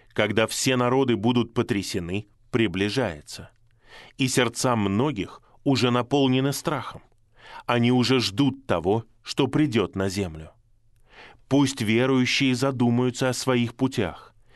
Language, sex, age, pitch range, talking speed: Russian, male, 20-39, 105-130 Hz, 105 wpm